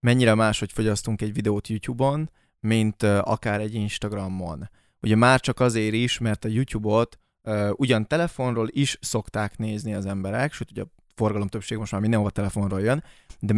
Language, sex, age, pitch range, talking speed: Hungarian, male, 20-39, 105-120 Hz, 170 wpm